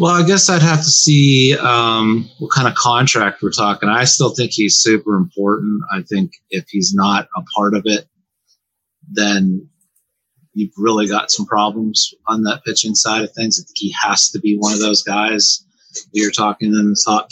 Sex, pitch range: male, 110-165 Hz